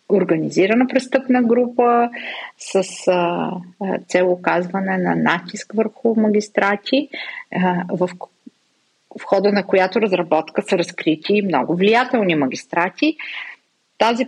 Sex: female